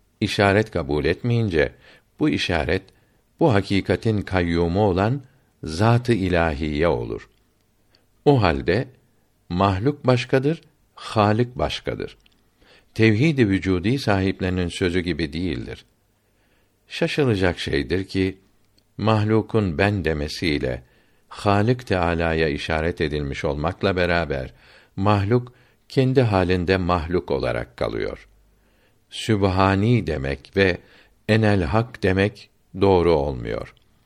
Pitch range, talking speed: 90-115 Hz, 90 wpm